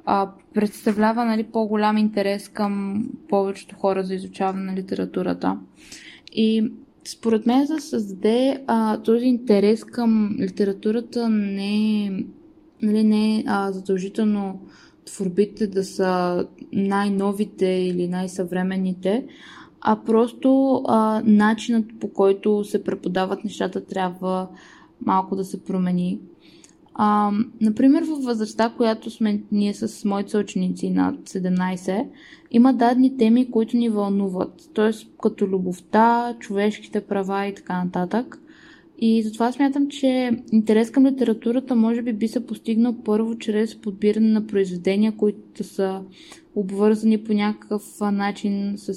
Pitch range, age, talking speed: 195-230 Hz, 20-39, 115 wpm